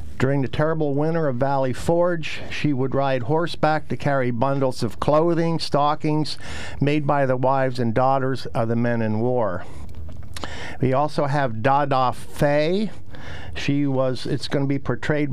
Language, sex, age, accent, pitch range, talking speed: English, male, 50-69, American, 120-150 Hz, 155 wpm